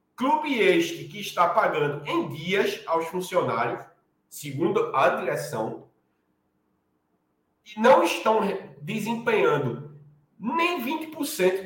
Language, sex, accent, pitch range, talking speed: Portuguese, male, Brazilian, 155-235 Hz, 95 wpm